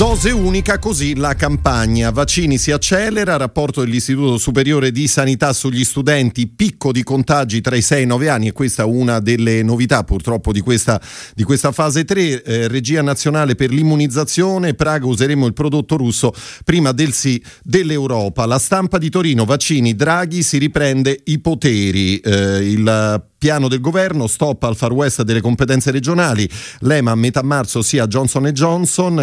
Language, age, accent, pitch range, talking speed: Italian, 40-59, native, 115-150 Hz, 170 wpm